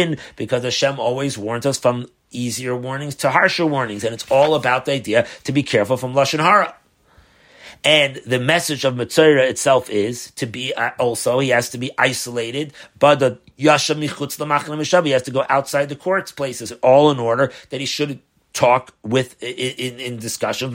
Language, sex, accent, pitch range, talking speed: English, male, American, 130-165 Hz, 180 wpm